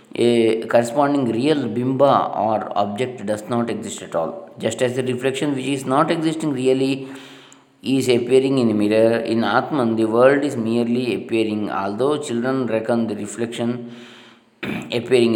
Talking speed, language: 150 wpm, English